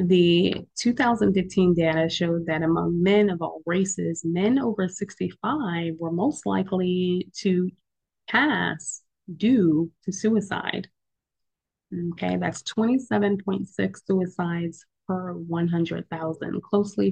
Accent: American